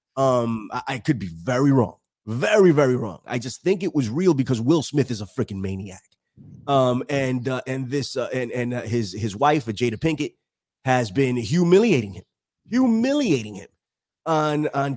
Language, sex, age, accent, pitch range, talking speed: English, male, 30-49, American, 120-170 Hz, 180 wpm